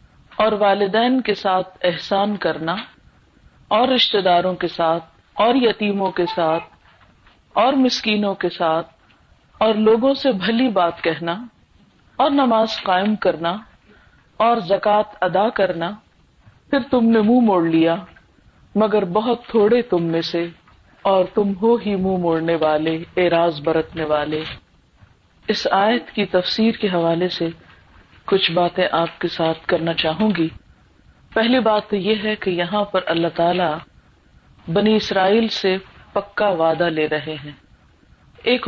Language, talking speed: Urdu, 140 wpm